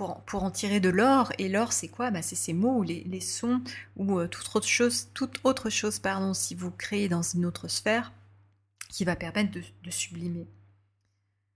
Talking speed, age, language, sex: 200 wpm, 20-39, English, female